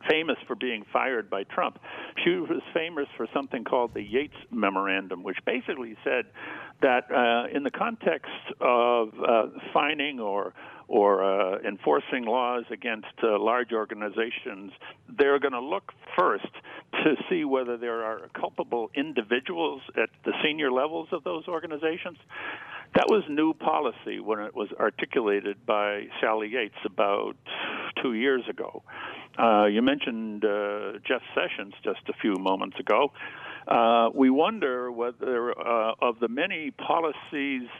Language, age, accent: English, 50-69, American